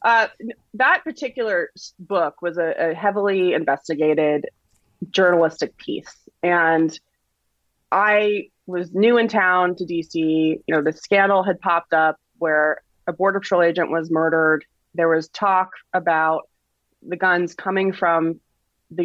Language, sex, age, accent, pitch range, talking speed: English, female, 20-39, American, 155-190 Hz, 130 wpm